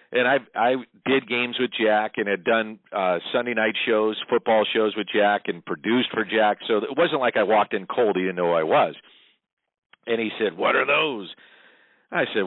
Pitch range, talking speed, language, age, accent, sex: 100-120 Hz, 210 wpm, English, 50-69, American, male